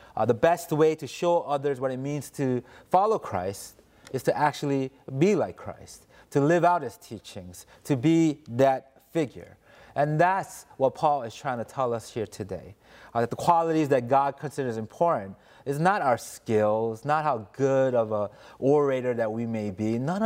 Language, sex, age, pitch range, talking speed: English, male, 30-49, 115-155 Hz, 185 wpm